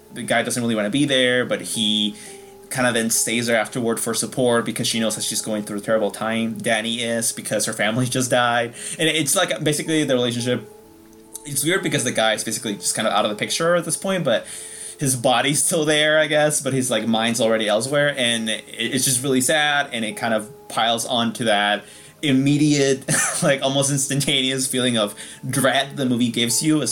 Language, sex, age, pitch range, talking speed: English, male, 20-39, 115-145 Hz, 210 wpm